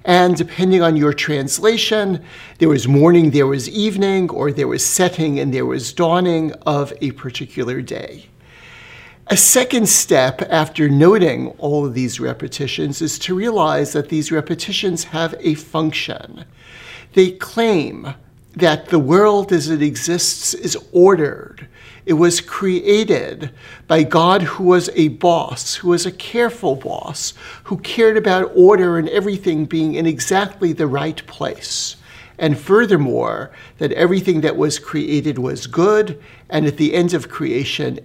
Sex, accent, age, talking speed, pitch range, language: male, American, 60-79, 145 wpm, 150-185 Hz, English